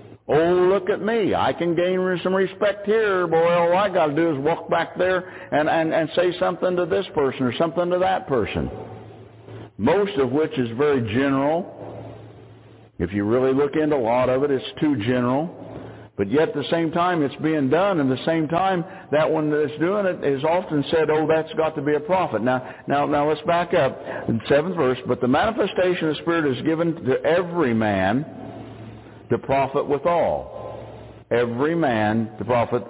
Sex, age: male, 60-79